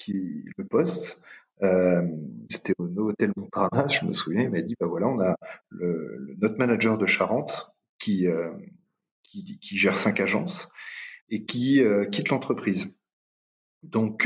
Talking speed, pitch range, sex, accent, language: 160 wpm, 95-115 Hz, male, French, French